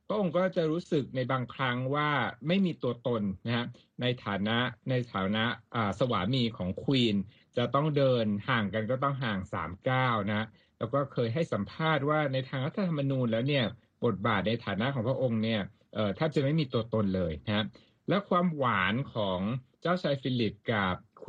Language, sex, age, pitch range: Thai, male, 60-79, 115-150 Hz